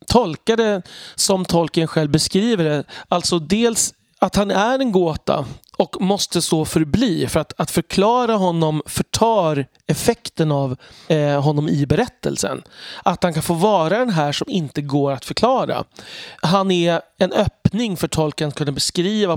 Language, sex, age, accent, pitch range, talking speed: Swedish, male, 30-49, native, 150-195 Hz, 155 wpm